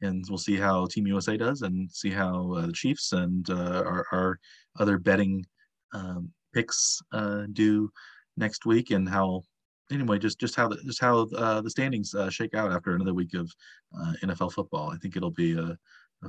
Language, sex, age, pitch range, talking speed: English, male, 30-49, 90-115 Hz, 195 wpm